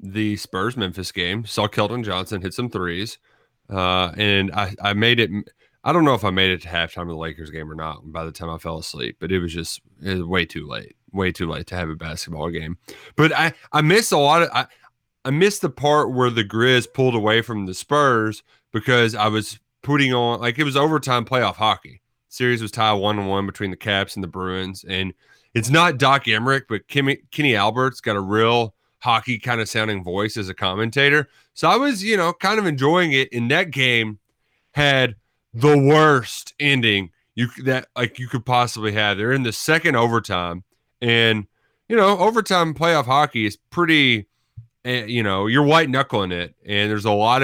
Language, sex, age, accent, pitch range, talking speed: English, male, 30-49, American, 100-135 Hz, 205 wpm